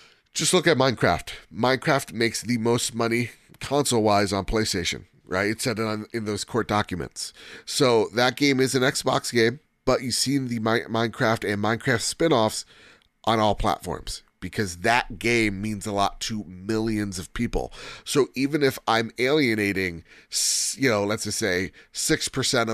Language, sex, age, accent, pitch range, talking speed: English, male, 30-49, American, 100-125 Hz, 165 wpm